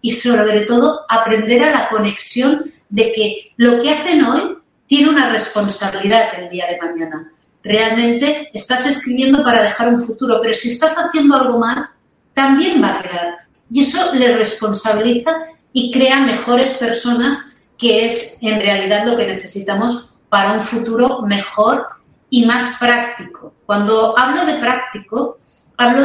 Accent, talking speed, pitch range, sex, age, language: Spanish, 150 wpm, 210-260 Hz, female, 40-59, Spanish